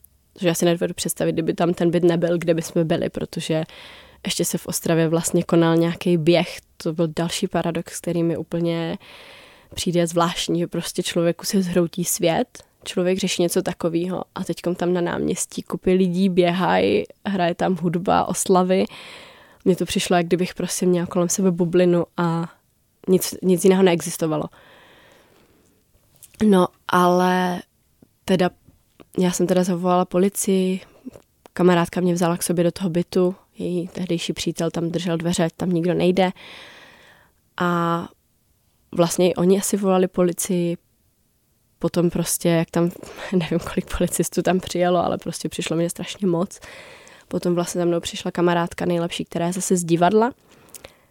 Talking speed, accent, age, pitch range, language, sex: 150 wpm, native, 20-39, 170-185 Hz, Czech, female